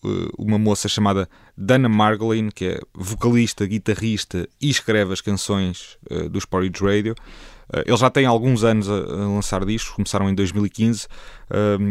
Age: 20-39